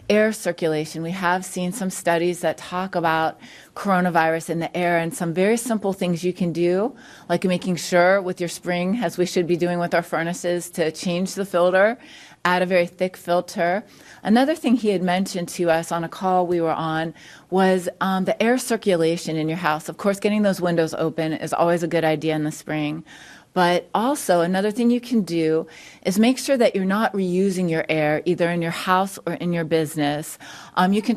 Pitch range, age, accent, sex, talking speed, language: 165-190 Hz, 30-49, American, female, 205 wpm, English